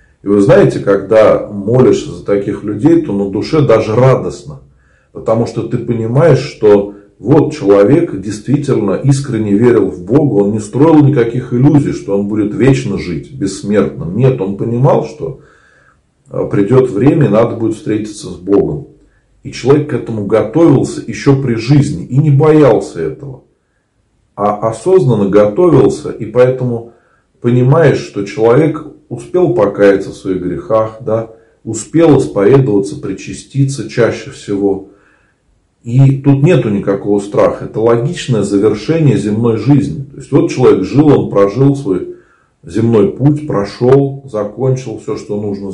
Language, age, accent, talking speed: Russian, 40-59, native, 135 wpm